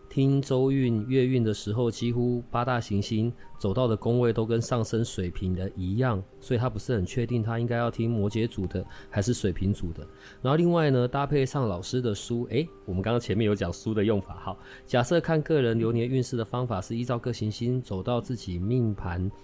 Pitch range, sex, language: 100-125 Hz, male, Chinese